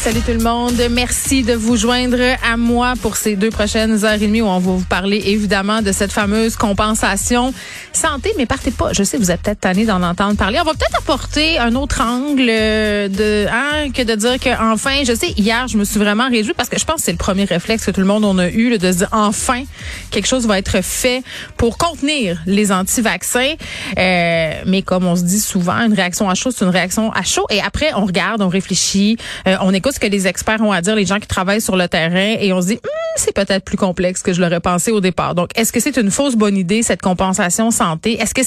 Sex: female